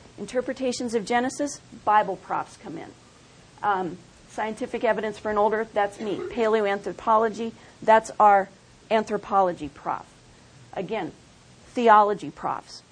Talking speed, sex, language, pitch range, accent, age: 110 wpm, female, English, 210-275 Hz, American, 40-59